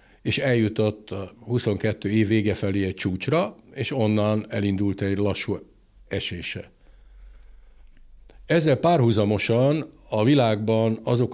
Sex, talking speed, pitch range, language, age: male, 105 wpm, 100-130 Hz, Hungarian, 60-79